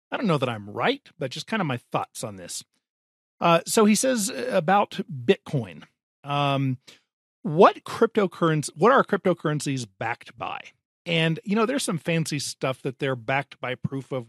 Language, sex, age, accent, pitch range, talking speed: English, male, 40-59, American, 130-175 Hz, 170 wpm